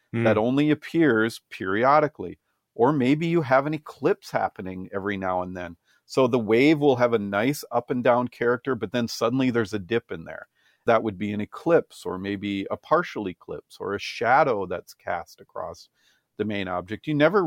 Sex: male